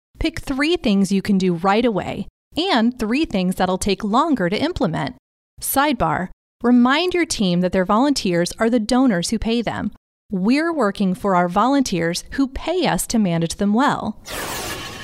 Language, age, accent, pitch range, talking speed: English, 30-49, American, 195-275 Hz, 165 wpm